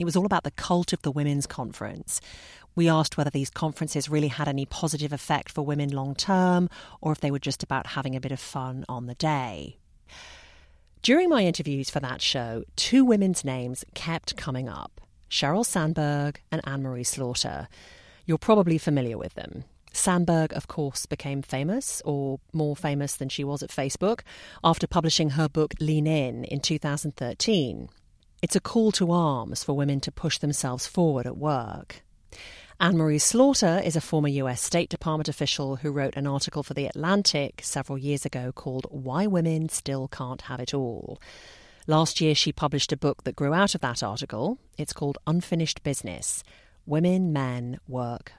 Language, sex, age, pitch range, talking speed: English, female, 40-59, 130-160 Hz, 175 wpm